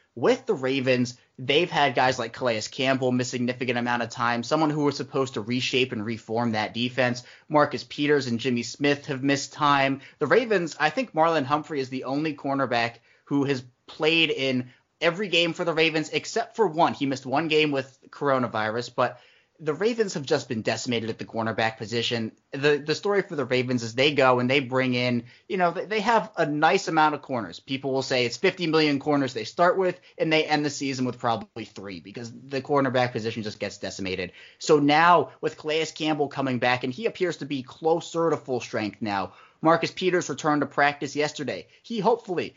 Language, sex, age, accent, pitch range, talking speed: English, male, 30-49, American, 125-155 Hz, 205 wpm